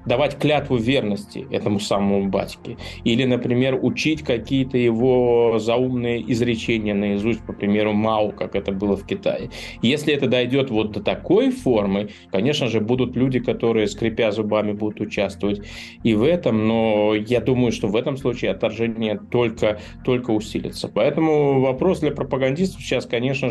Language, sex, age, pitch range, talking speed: Russian, male, 20-39, 105-125 Hz, 150 wpm